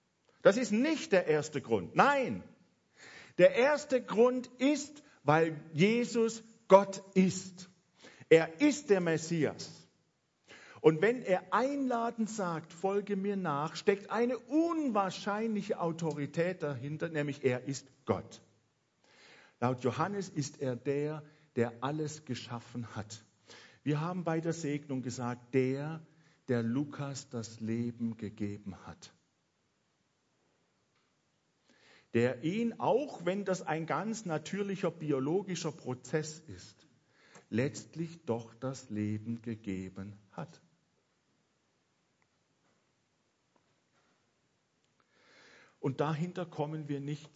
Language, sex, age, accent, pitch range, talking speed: German, male, 50-69, German, 130-195 Hz, 100 wpm